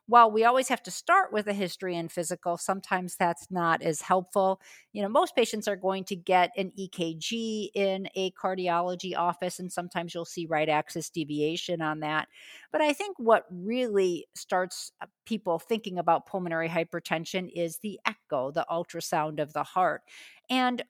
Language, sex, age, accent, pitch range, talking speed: English, female, 50-69, American, 165-200 Hz, 170 wpm